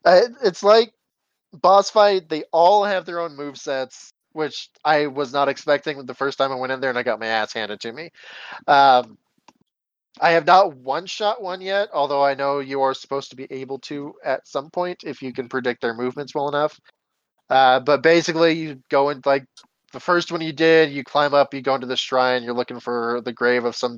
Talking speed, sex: 220 wpm, male